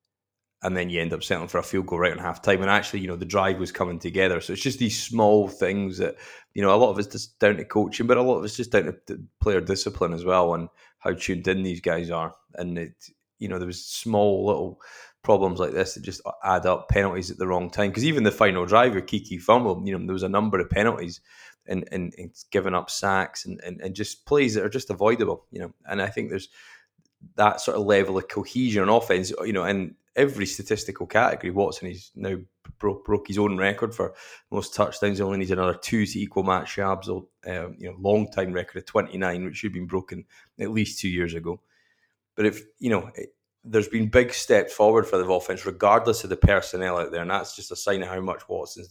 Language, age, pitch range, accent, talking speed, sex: English, 20-39, 90-105 Hz, British, 240 wpm, male